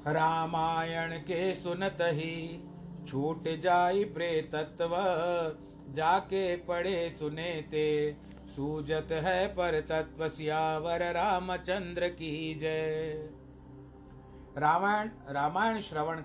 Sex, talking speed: male, 80 wpm